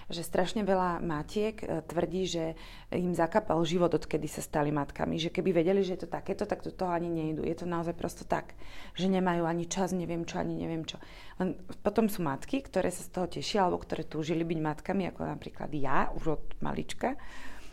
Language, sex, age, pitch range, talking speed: Slovak, female, 30-49, 160-185 Hz, 200 wpm